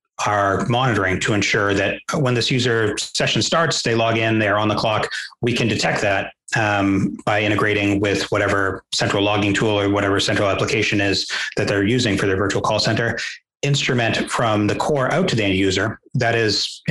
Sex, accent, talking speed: male, American, 190 wpm